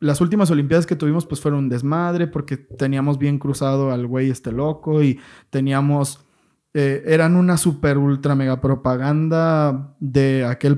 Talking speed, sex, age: 155 wpm, male, 20-39